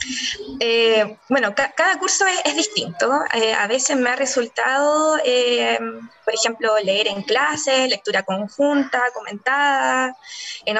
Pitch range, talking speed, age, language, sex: 215-275 Hz, 135 wpm, 20-39, Spanish, female